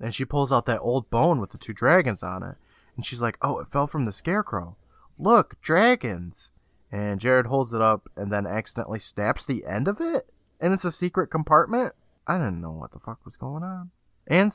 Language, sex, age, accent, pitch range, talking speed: English, male, 20-39, American, 100-135 Hz, 215 wpm